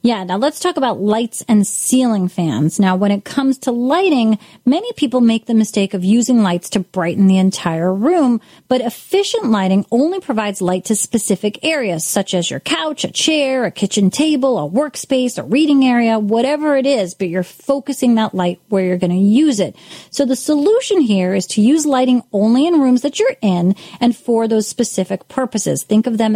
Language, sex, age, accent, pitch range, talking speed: English, female, 30-49, American, 200-260 Hz, 200 wpm